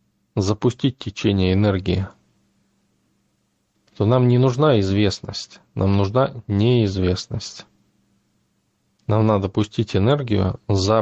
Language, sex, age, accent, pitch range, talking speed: Russian, male, 20-39, native, 95-115 Hz, 85 wpm